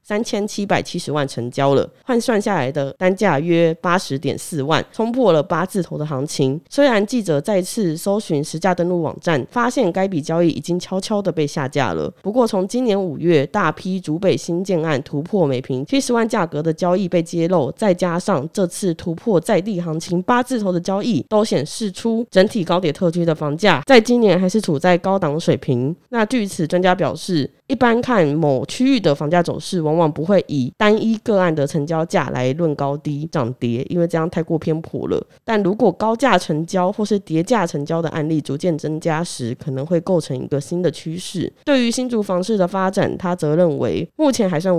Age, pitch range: 20-39, 155-205 Hz